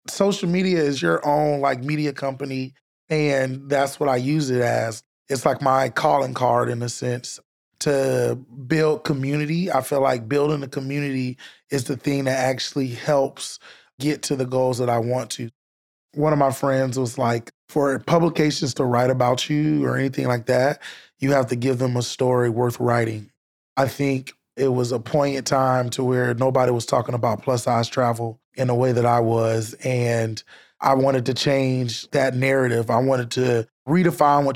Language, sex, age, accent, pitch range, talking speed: English, male, 20-39, American, 120-140 Hz, 185 wpm